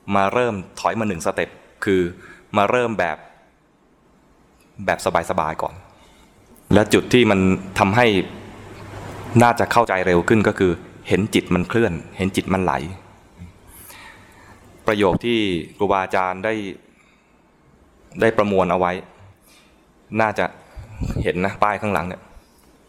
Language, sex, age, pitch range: English, male, 20-39, 90-110 Hz